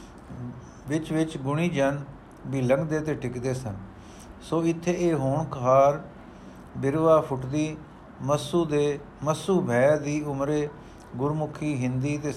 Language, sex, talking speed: Punjabi, male, 120 wpm